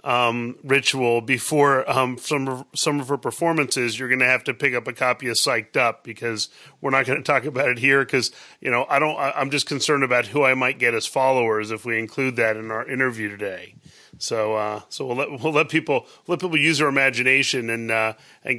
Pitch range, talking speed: 125-150 Hz, 230 wpm